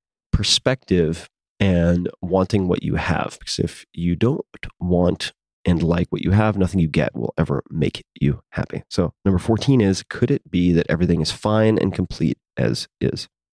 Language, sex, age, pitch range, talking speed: English, male, 30-49, 85-105 Hz, 175 wpm